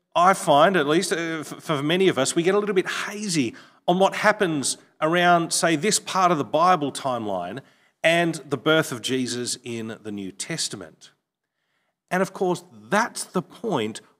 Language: English